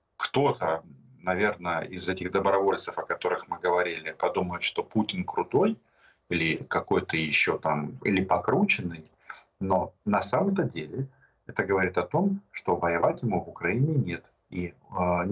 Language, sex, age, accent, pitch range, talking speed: Russian, male, 40-59, native, 90-135 Hz, 135 wpm